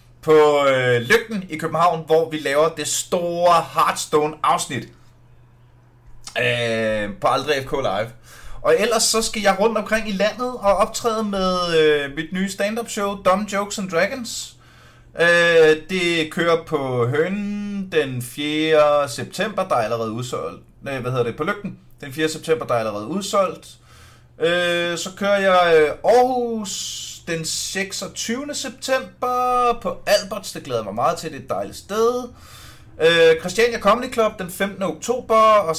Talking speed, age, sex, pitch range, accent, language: 150 wpm, 30-49, male, 145-205 Hz, native, Danish